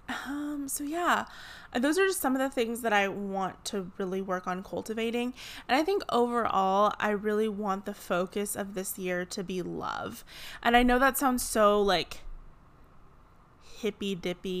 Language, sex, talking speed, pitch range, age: English, female, 175 wpm, 190-225 Hz, 20-39